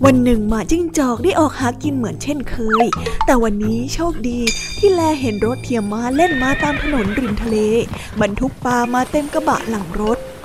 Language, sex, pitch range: Thai, female, 230-295 Hz